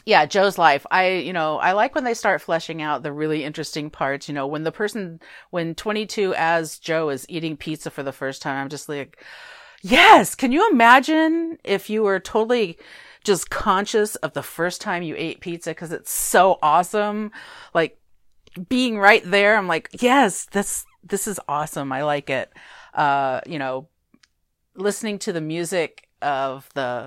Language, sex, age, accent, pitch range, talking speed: English, female, 40-59, American, 140-190 Hz, 175 wpm